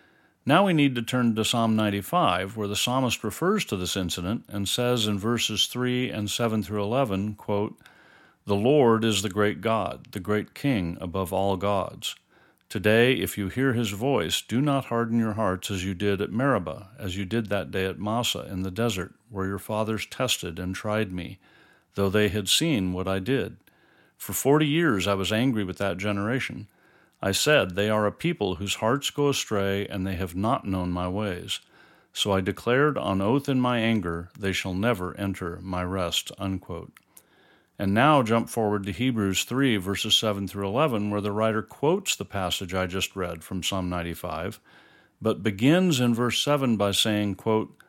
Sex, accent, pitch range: male, American, 95-115 Hz